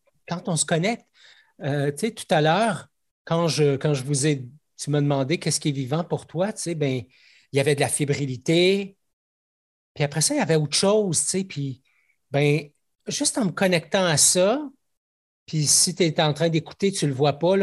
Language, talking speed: French, 210 wpm